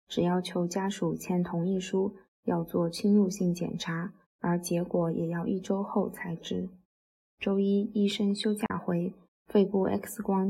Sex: female